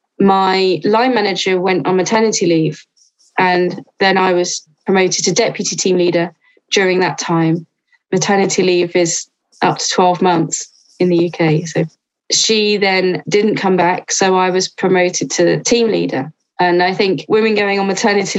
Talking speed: 160 wpm